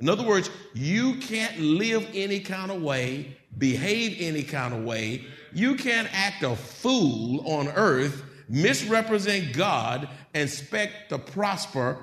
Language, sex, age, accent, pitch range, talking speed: English, male, 50-69, American, 135-200 Hz, 140 wpm